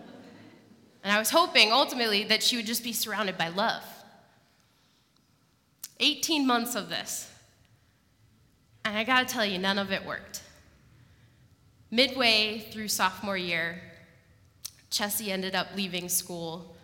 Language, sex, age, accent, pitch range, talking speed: English, female, 20-39, American, 165-225 Hz, 130 wpm